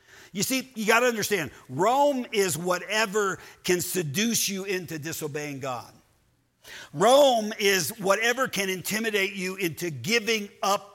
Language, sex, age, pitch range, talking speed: English, male, 50-69, 165-215 Hz, 130 wpm